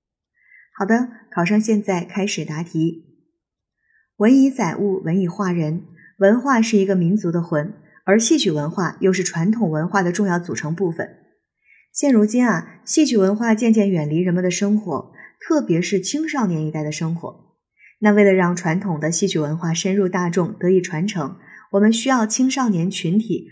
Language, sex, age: Chinese, female, 20-39